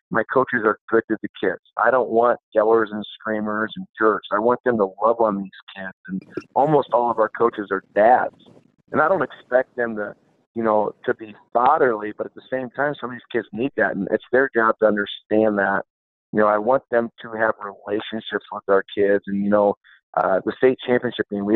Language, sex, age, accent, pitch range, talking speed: English, male, 50-69, American, 100-115 Hz, 225 wpm